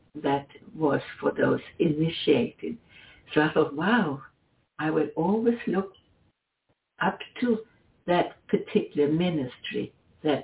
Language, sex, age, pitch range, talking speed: English, female, 60-79, 155-220 Hz, 110 wpm